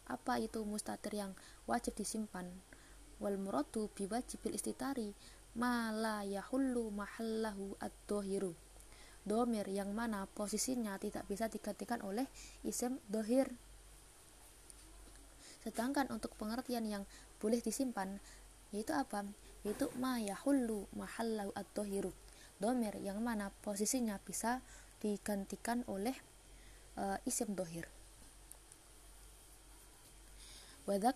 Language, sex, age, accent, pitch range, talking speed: Indonesian, female, 20-39, native, 200-240 Hz, 95 wpm